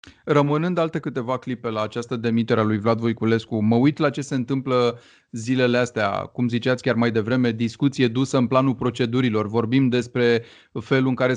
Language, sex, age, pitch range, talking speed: Romanian, male, 30-49, 115-135 Hz, 180 wpm